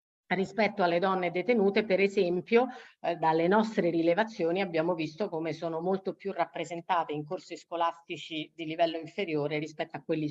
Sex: female